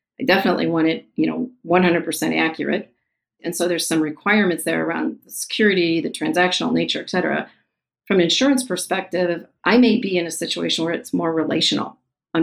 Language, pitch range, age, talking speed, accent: English, 160-190 Hz, 40-59, 185 wpm, American